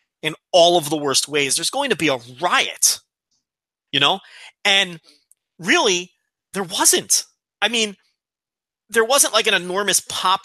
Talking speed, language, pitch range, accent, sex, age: 150 wpm, English, 155-215 Hz, American, male, 30-49